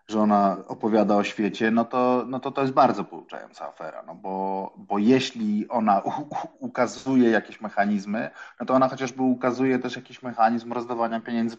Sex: male